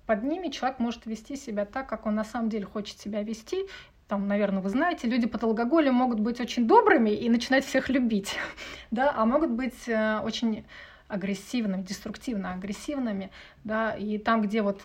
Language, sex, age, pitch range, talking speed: Russian, female, 30-49, 205-250 Hz, 160 wpm